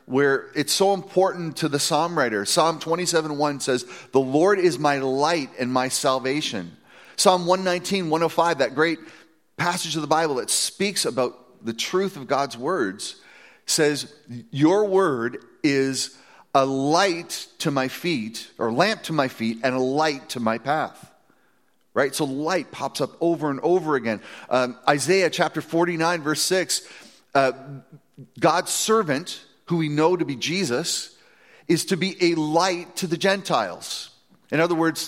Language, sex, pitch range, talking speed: English, male, 135-180 Hz, 155 wpm